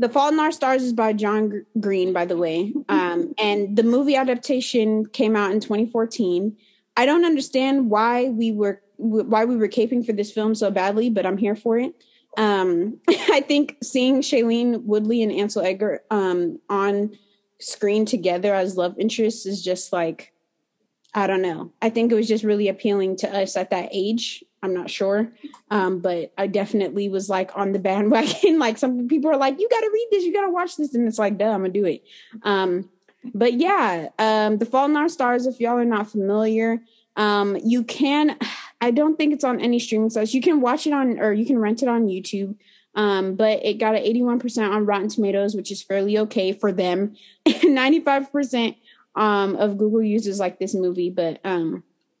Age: 20-39